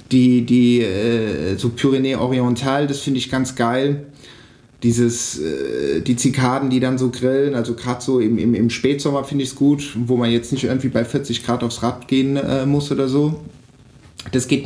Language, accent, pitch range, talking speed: German, German, 120-140 Hz, 180 wpm